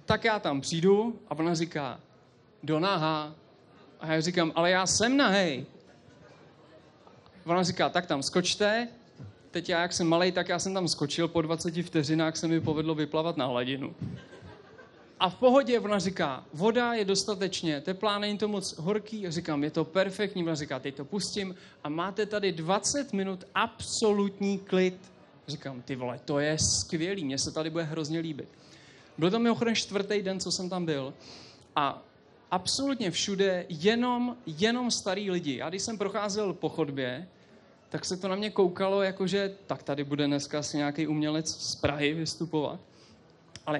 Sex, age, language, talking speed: male, 20-39, Czech, 170 wpm